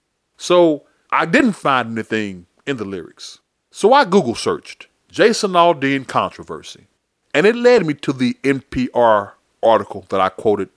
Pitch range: 105-160 Hz